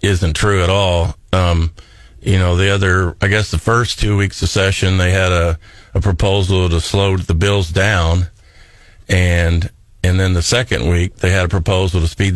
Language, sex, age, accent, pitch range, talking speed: English, male, 50-69, American, 90-105 Hz, 190 wpm